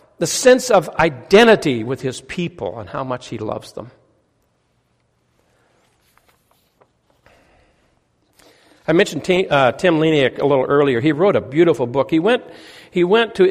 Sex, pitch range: male, 145-195 Hz